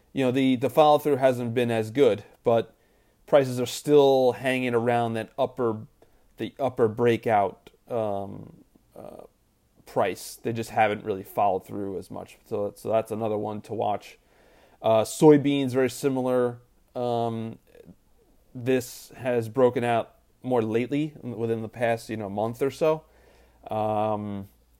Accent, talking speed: American, 145 wpm